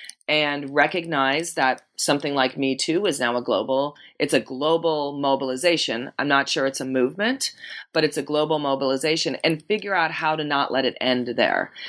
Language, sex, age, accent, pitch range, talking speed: English, female, 30-49, American, 135-165 Hz, 180 wpm